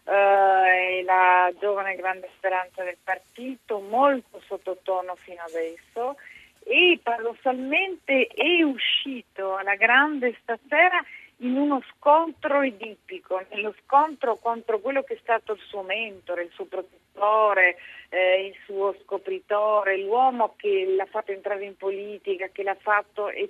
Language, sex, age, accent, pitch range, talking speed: Italian, female, 40-59, native, 185-230 Hz, 135 wpm